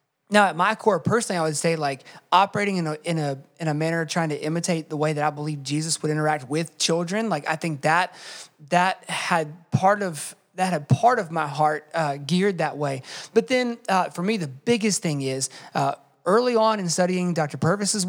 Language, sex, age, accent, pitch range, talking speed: English, male, 30-49, American, 150-195 Hz, 210 wpm